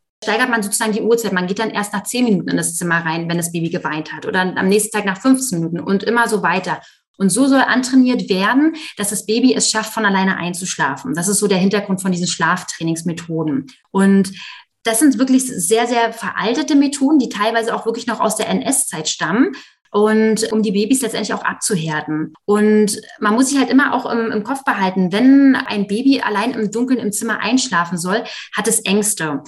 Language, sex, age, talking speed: English, female, 20-39, 205 wpm